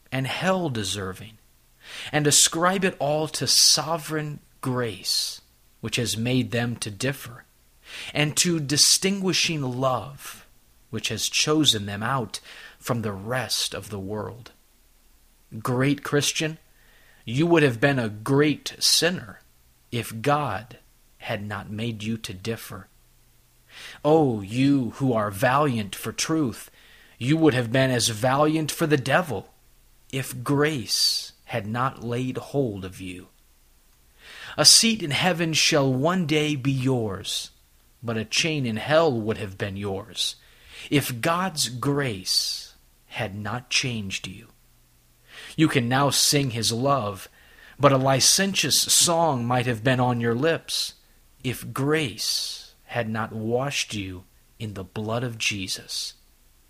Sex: male